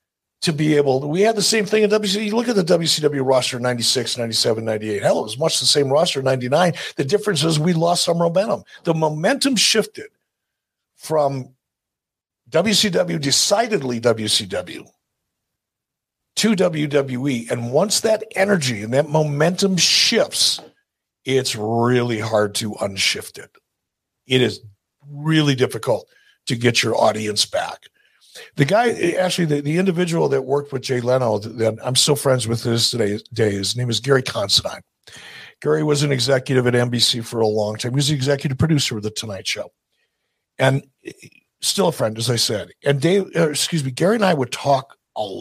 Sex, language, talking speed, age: male, English, 170 wpm, 60-79